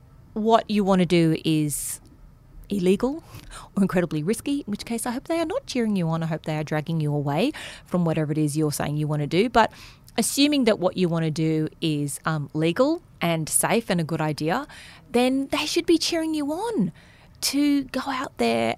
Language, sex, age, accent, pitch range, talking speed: English, female, 30-49, Australian, 155-205 Hz, 210 wpm